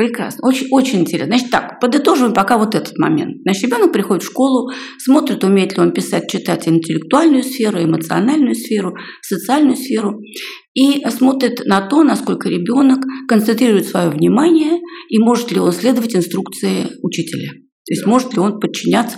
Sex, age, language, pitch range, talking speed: female, 40-59, Russian, 200-270 Hz, 155 wpm